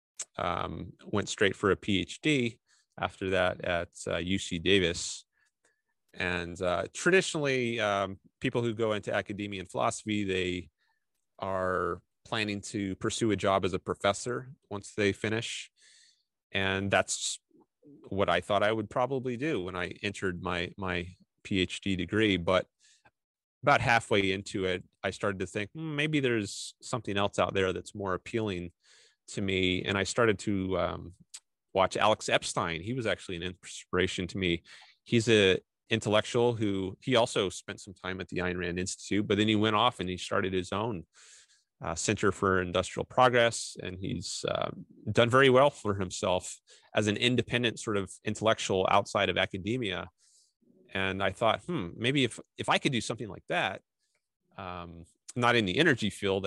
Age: 30-49